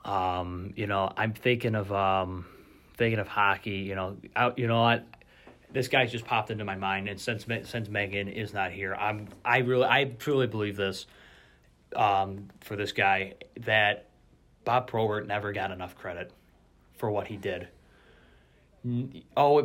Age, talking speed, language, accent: 30-49, 160 wpm, English, American